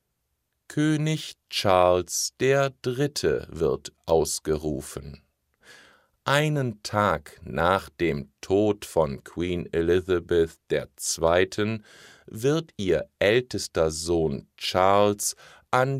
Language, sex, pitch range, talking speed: German, male, 85-120 Hz, 75 wpm